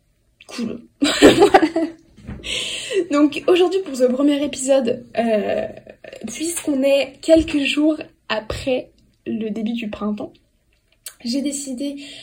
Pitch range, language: 225-280 Hz, French